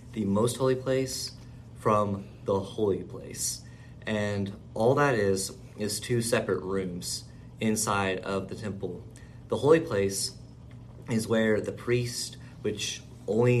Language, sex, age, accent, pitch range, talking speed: English, male, 20-39, American, 100-120 Hz, 130 wpm